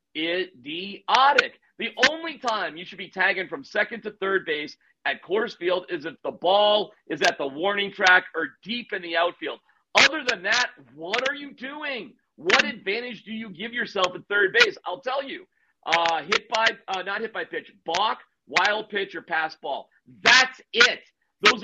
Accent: American